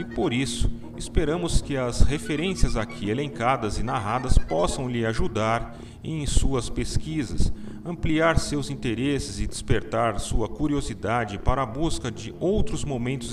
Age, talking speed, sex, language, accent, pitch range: 40-59, 135 wpm, male, Portuguese, Brazilian, 105-150 Hz